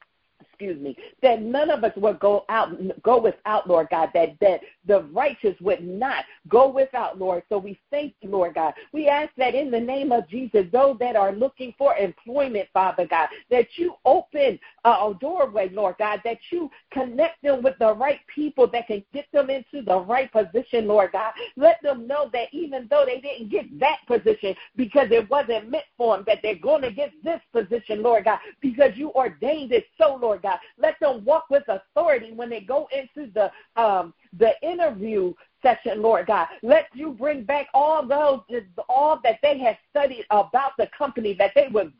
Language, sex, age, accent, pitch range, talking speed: English, female, 50-69, American, 215-290 Hz, 195 wpm